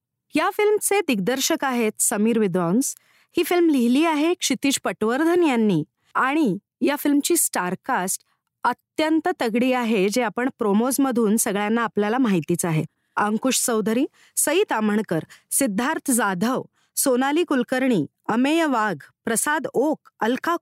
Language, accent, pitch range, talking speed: Marathi, native, 220-310 Hz, 115 wpm